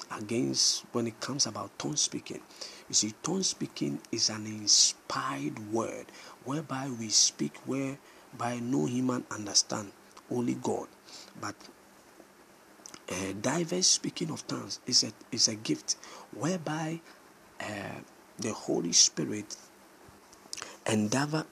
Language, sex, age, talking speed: English, male, 50-69, 120 wpm